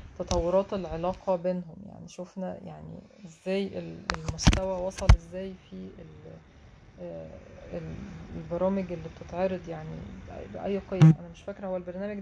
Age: 30-49